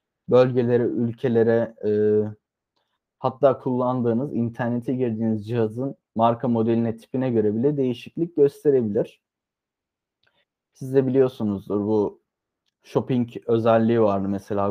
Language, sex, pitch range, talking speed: Turkish, male, 110-130 Hz, 95 wpm